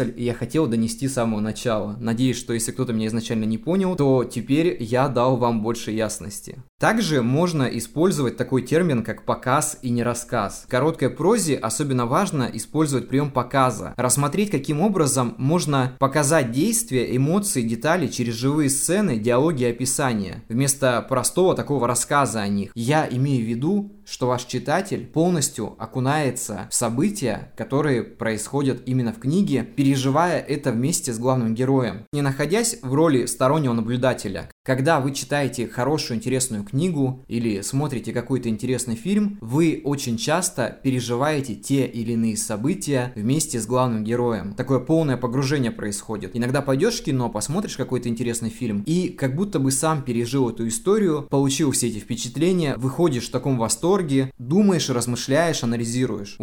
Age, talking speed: 20-39, 150 wpm